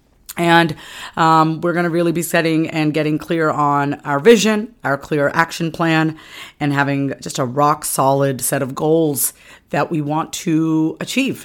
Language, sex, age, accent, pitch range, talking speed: English, female, 30-49, American, 150-190 Hz, 170 wpm